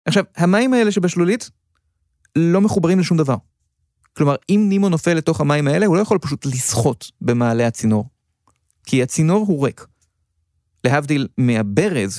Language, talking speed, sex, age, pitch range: Hebrew, 140 wpm, male, 30-49, 115-175 Hz